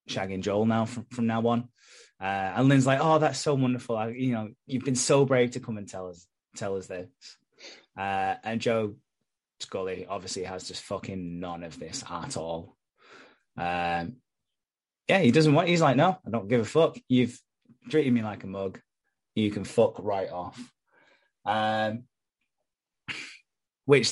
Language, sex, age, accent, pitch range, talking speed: English, male, 20-39, British, 95-120 Hz, 170 wpm